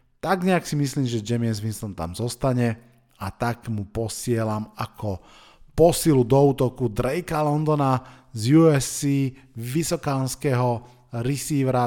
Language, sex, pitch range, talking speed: Slovak, male, 110-135 Hz, 115 wpm